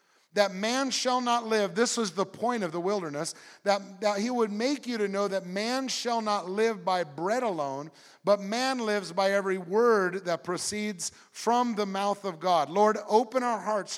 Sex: male